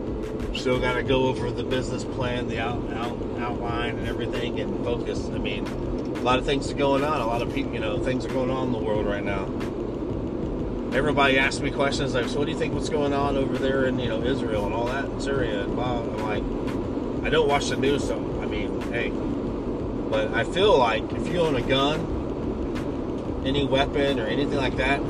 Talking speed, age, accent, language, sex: 210 wpm, 30-49, American, English, male